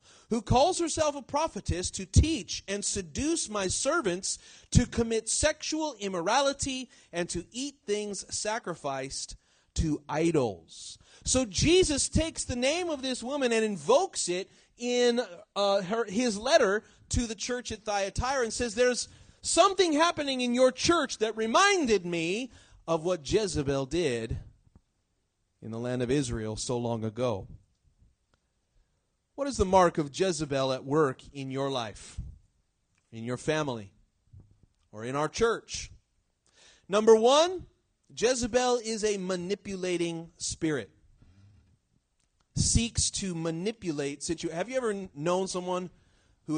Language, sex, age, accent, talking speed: English, male, 40-59, American, 130 wpm